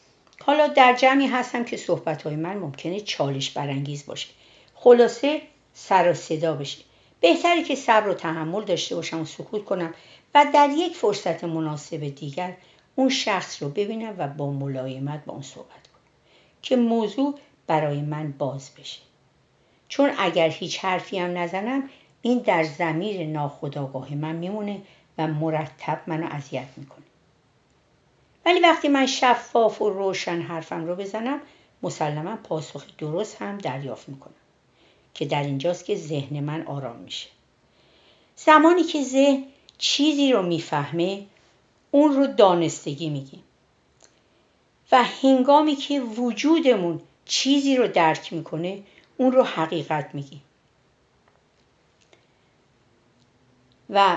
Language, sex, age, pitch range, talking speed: Persian, female, 60-79, 155-245 Hz, 125 wpm